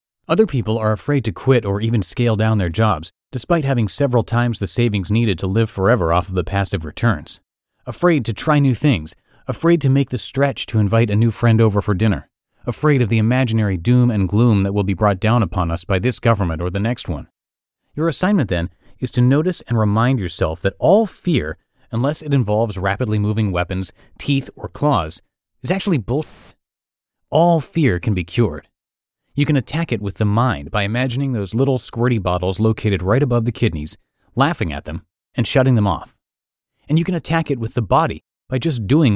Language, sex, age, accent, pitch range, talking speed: English, male, 30-49, American, 100-135 Hz, 200 wpm